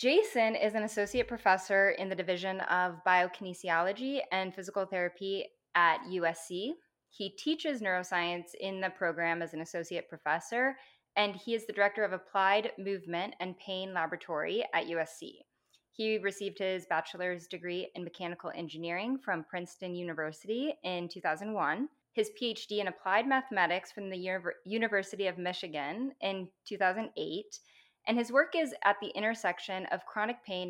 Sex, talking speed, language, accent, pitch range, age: female, 145 wpm, English, American, 175-210 Hz, 10-29